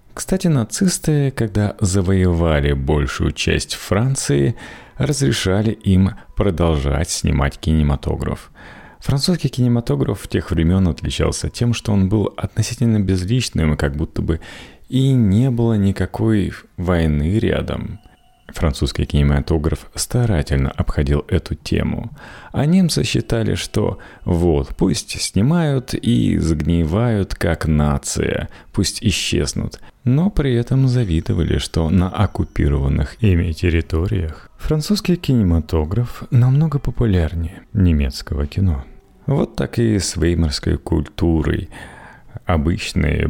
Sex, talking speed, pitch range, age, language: male, 105 wpm, 75-115 Hz, 30-49, Russian